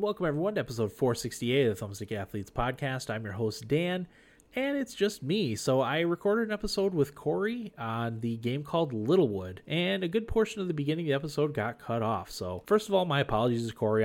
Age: 30-49